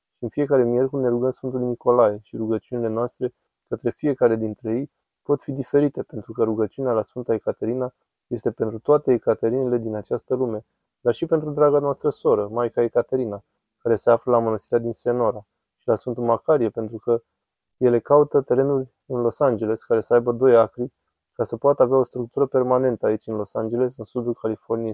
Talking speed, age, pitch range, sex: 185 wpm, 20-39, 115-135 Hz, male